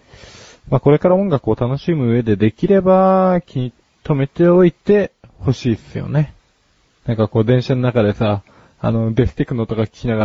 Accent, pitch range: native, 110-150 Hz